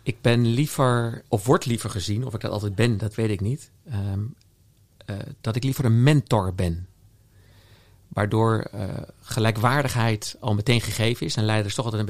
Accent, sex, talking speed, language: Dutch, male, 180 wpm, Dutch